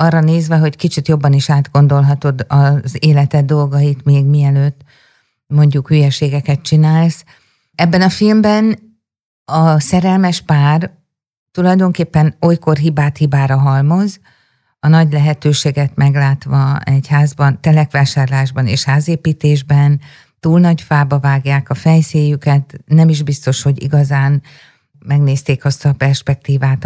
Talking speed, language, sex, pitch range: 110 wpm, Hungarian, female, 135-155 Hz